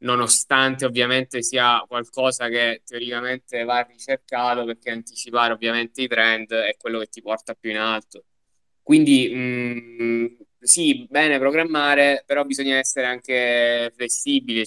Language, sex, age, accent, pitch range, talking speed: Italian, male, 10-29, native, 110-125 Hz, 125 wpm